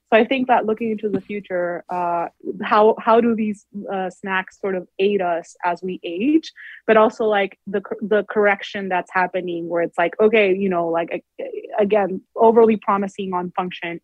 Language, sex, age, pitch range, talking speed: English, female, 20-39, 180-220 Hz, 180 wpm